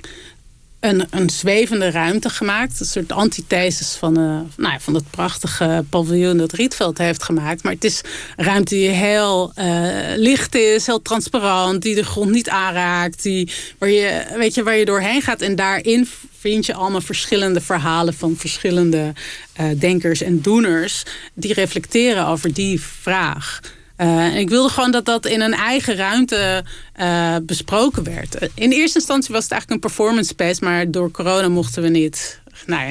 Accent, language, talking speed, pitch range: Dutch, Dutch, 160 wpm, 170-220 Hz